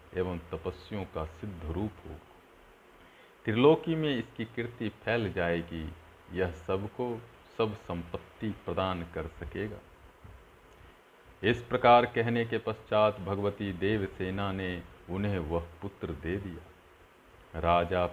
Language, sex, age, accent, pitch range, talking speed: Hindi, male, 50-69, native, 90-105 Hz, 110 wpm